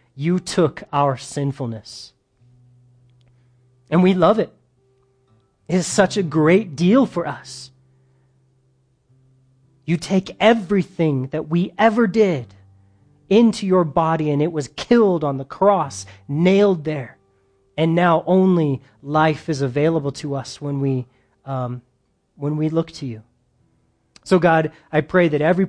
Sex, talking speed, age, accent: male, 135 wpm, 30-49, American